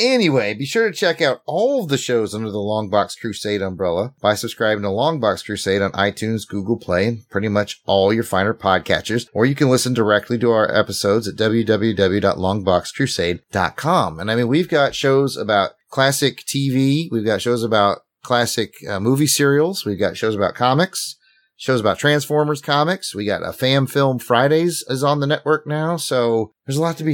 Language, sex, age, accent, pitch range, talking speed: English, male, 30-49, American, 100-135 Hz, 185 wpm